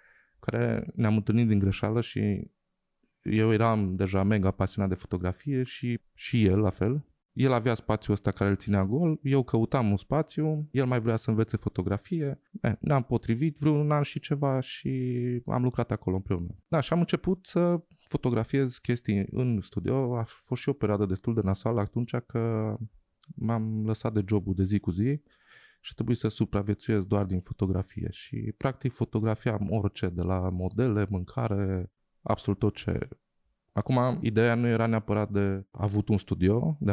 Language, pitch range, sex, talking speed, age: Romanian, 100-125 Hz, male, 170 wpm, 20-39